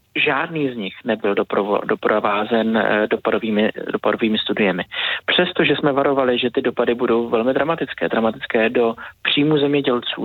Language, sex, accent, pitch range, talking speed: Czech, male, native, 125-145 Hz, 115 wpm